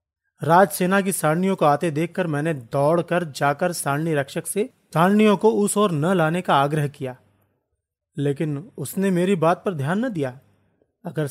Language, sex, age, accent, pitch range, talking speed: Hindi, male, 40-59, native, 140-190 Hz, 165 wpm